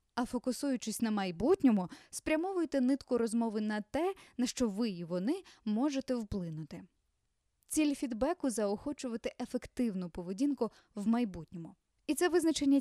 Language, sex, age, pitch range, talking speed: Ukrainian, female, 20-39, 215-290 Hz, 125 wpm